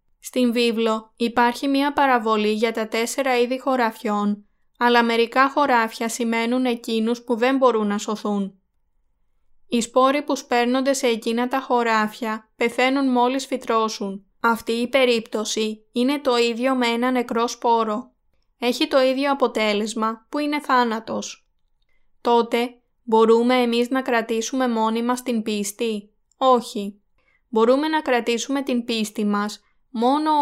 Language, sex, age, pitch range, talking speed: Greek, female, 20-39, 215-250 Hz, 130 wpm